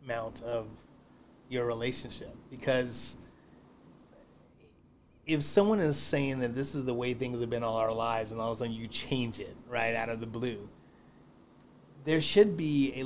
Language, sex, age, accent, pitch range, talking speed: English, male, 30-49, American, 120-140 Hz, 170 wpm